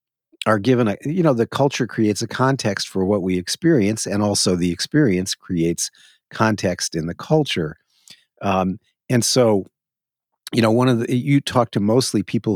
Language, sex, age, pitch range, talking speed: English, male, 50-69, 95-115 Hz, 170 wpm